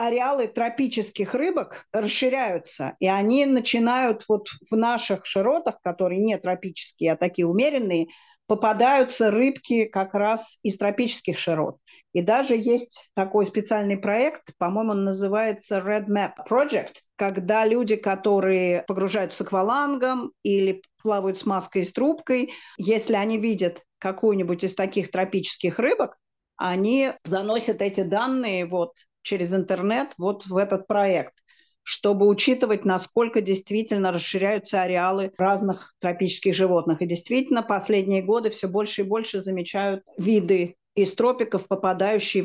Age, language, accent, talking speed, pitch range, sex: 40-59, Russian, native, 125 wpm, 190-225 Hz, female